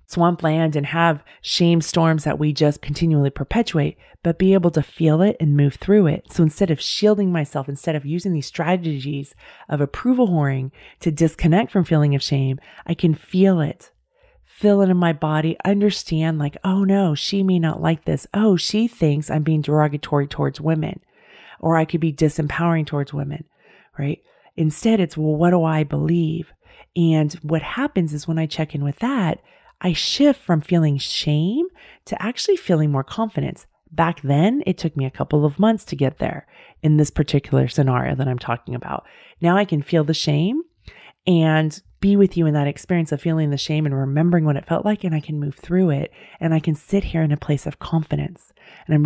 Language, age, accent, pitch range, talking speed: English, 30-49, American, 150-180 Hz, 200 wpm